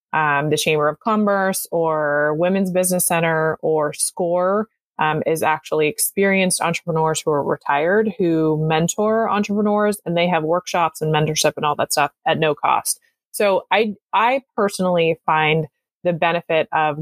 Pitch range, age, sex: 160-220 Hz, 20-39, female